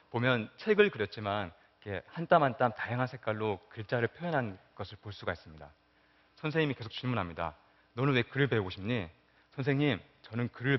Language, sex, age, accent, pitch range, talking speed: English, male, 30-49, Korean, 85-130 Hz, 140 wpm